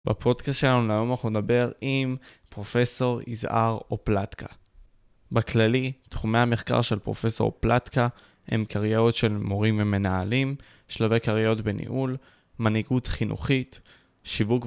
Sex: male